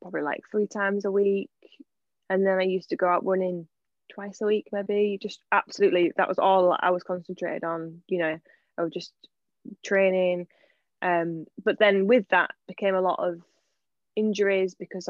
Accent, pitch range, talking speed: British, 175-200 Hz, 175 wpm